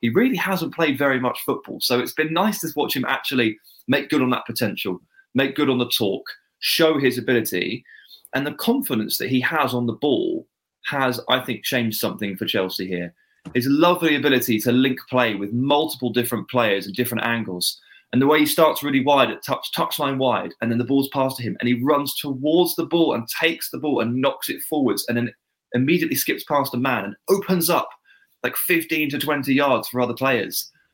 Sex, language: male, English